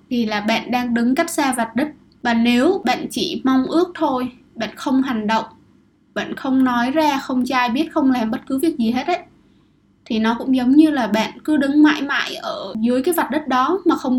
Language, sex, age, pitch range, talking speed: Vietnamese, female, 20-39, 235-300 Hz, 225 wpm